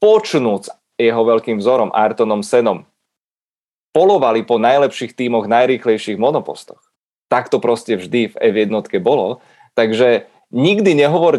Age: 30-49